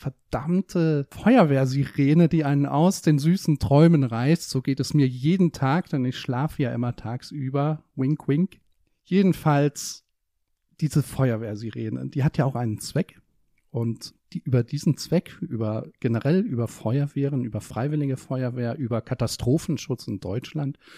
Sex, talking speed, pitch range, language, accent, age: male, 135 wpm, 120-155 Hz, German, German, 40-59